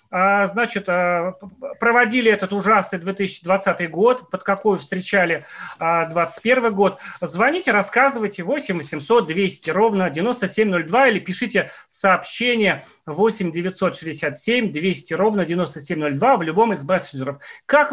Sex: male